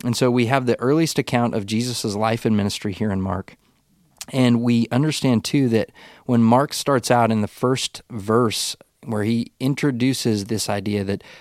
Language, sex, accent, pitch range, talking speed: English, male, American, 105-125 Hz, 180 wpm